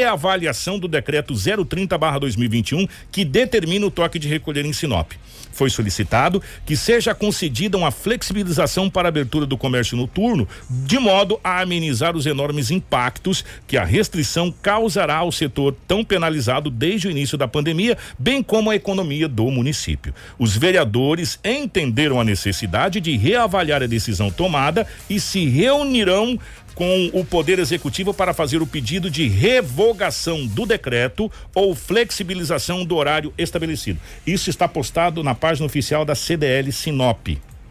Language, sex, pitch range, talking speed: Portuguese, male, 120-185 Hz, 145 wpm